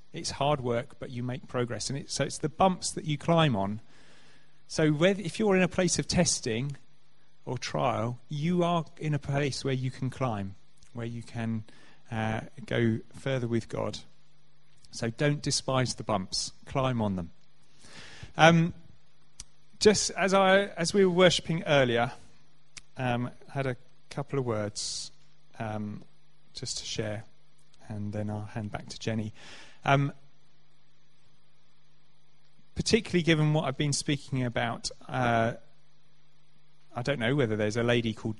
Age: 30-49